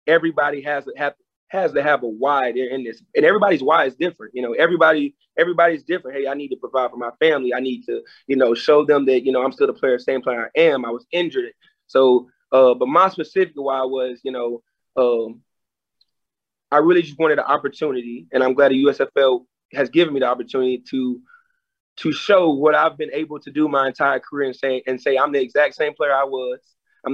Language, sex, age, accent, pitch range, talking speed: English, male, 30-49, American, 130-165 Hz, 225 wpm